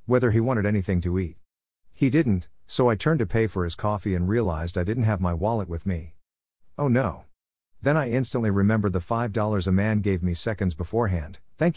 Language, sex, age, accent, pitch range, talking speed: English, male, 50-69, American, 90-115 Hz, 205 wpm